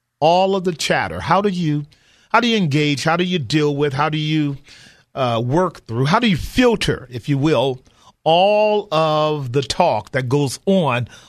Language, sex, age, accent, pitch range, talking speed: English, male, 40-59, American, 130-175 Hz, 190 wpm